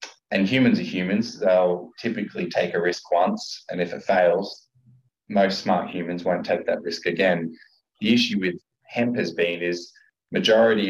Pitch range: 85-115 Hz